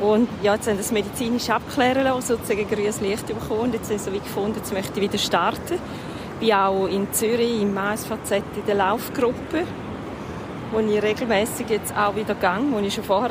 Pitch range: 215-250 Hz